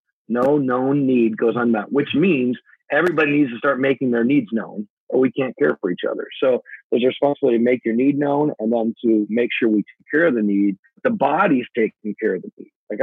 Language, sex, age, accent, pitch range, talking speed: English, male, 40-59, American, 125-200 Hz, 235 wpm